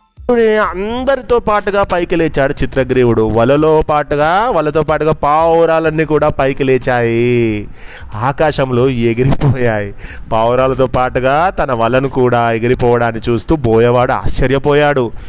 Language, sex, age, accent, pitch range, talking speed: Telugu, male, 30-49, native, 120-165 Hz, 95 wpm